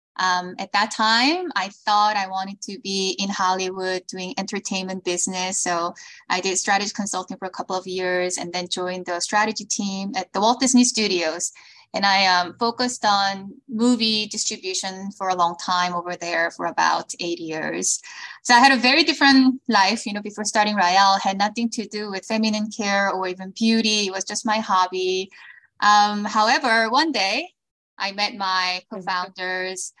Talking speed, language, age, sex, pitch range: 175 wpm, English, 10-29, female, 185-225 Hz